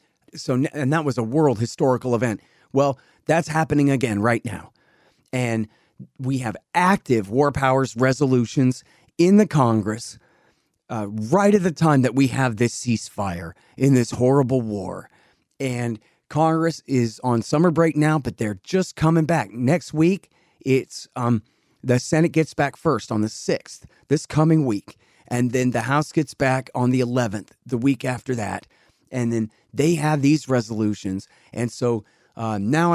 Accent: American